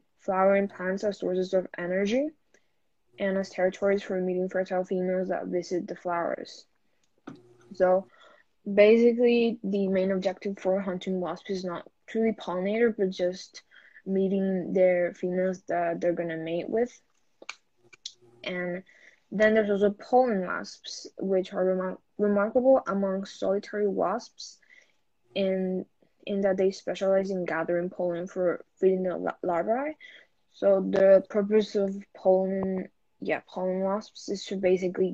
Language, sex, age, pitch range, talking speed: English, female, 10-29, 180-205 Hz, 130 wpm